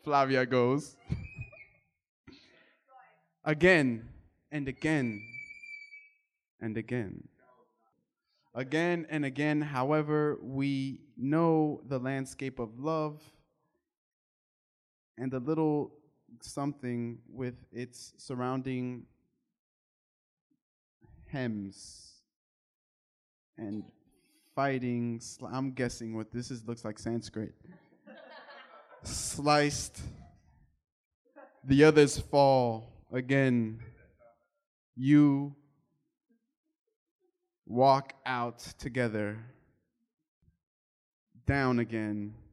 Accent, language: American, English